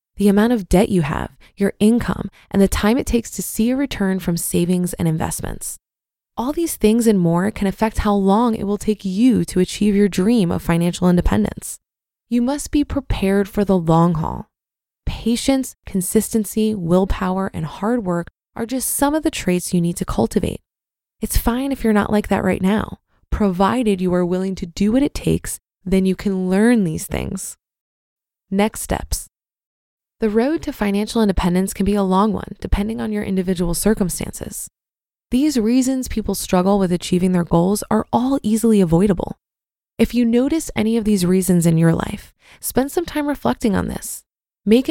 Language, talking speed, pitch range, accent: English, 180 wpm, 185-230 Hz, American